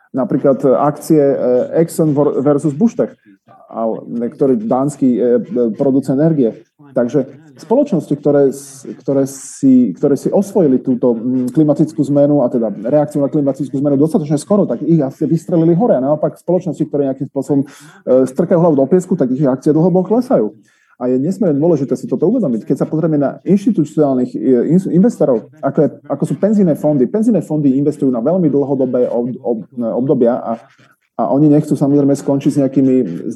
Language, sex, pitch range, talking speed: Slovak, male, 130-155 Hz, 145 wpm